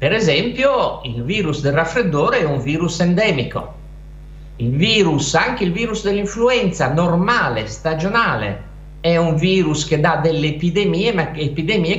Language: Italian